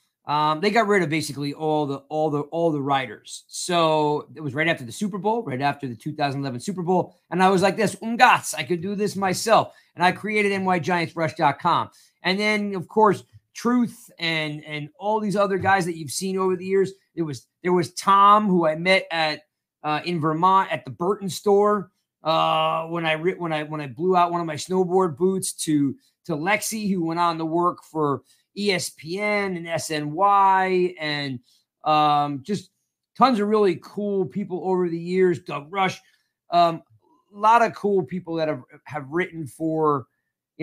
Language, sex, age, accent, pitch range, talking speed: English, male, 30-49, American, 155-195 Hz, 185 wpm